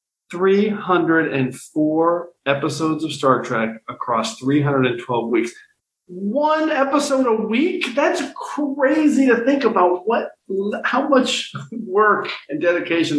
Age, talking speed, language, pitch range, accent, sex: 40-59, 105 wpm, English, 125-175 Hz, American, male